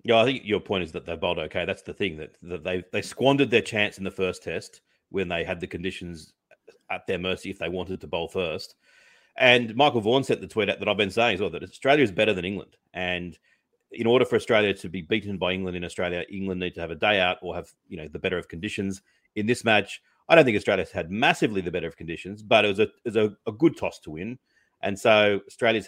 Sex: male